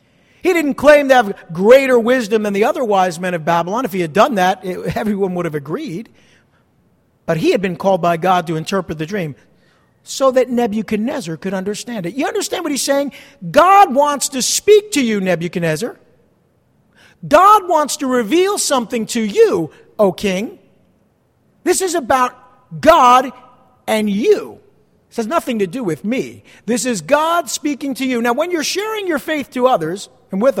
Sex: male